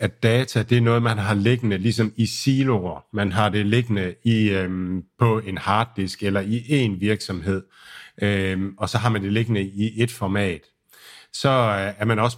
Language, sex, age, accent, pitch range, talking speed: Danish, male, 50-69, native, 100-125 Hz, 190 wpm